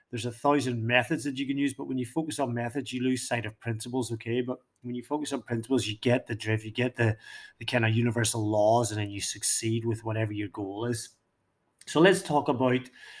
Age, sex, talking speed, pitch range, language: 30-49, male, 230 wpm, 115-140 Hz, English